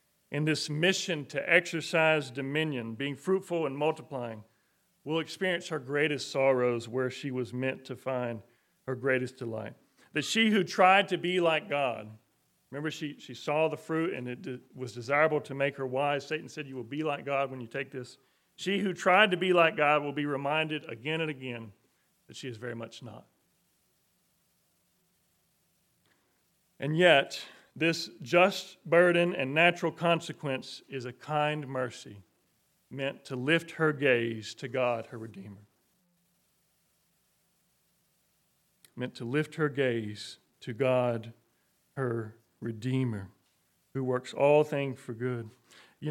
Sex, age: male, 40-59